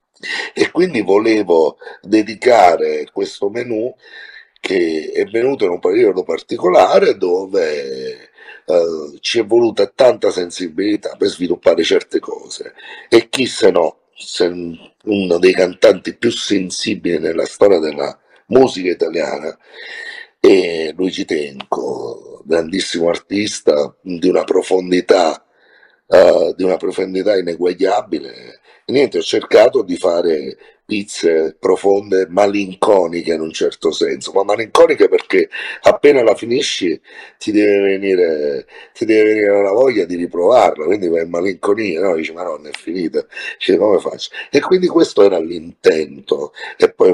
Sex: male